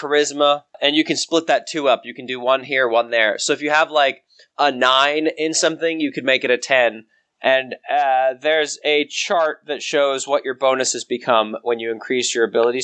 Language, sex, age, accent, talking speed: English, male, 20-39, American, 215 wpm